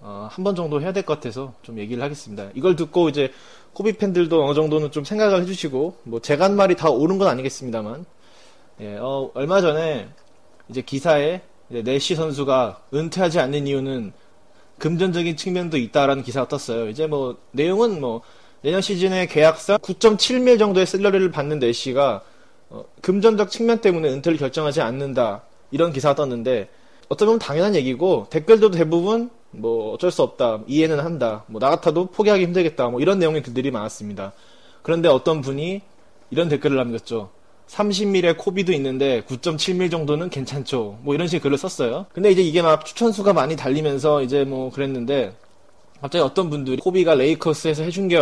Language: Korean